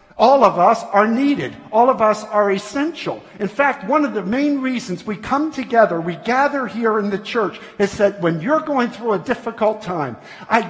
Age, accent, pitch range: 50-69, American, 195-255 Hz